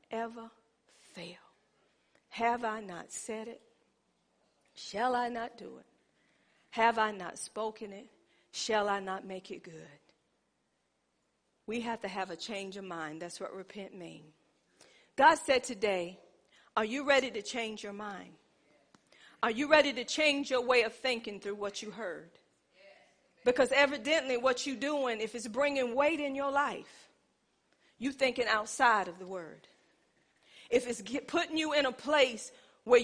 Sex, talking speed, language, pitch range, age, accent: female, 155 wpm, English, 210-265 Hz, 40-59, American